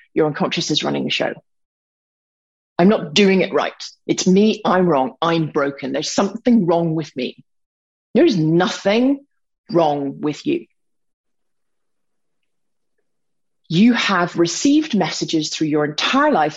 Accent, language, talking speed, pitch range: British, English, 130 wpm, 170-260 Hz